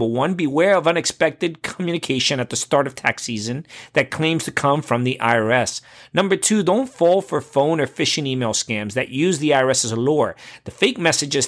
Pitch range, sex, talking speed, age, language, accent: 125-170 Hz, male, 205 wpm, 40-59, English, American